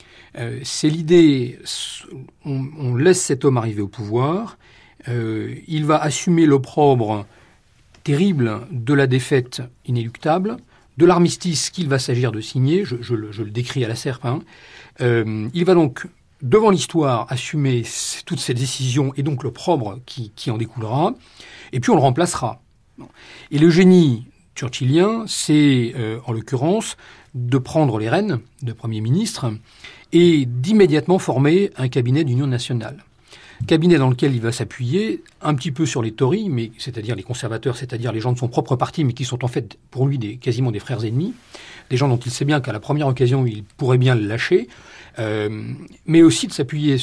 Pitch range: 120-155 Hz